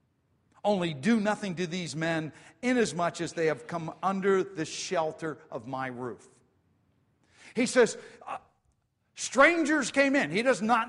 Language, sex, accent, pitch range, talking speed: English, male, American, 130-205 Hz, 145 wpm